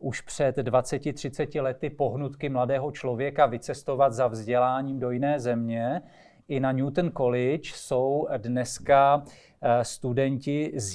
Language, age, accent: Czech, 40-59, native